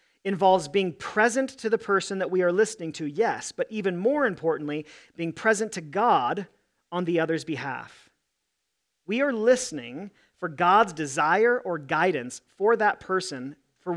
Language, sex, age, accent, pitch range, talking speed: English, male, 40-59, American, 160-220 Hz, 155 wpm